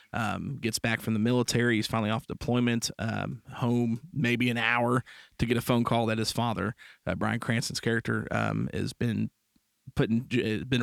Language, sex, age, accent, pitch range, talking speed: English, male, 40-59, American, 110-120 Hz, 185 wpm